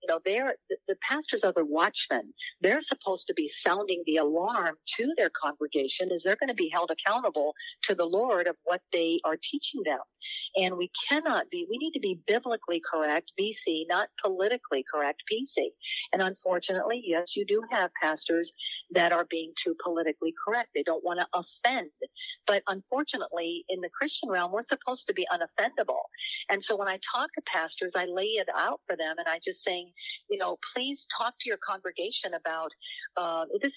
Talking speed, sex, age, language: 185 wpm, female, 50-69, English